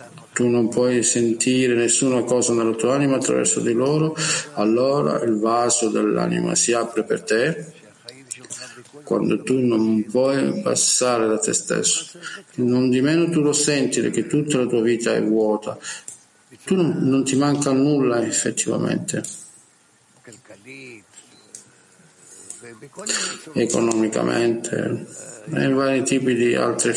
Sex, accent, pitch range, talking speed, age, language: male, native, 115-135 Hz, 120 wpm, 50-69, Italian